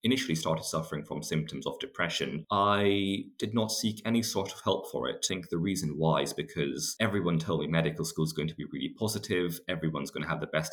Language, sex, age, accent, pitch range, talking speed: English, male, 20-39, British, 80-100 Hz, 230 wpm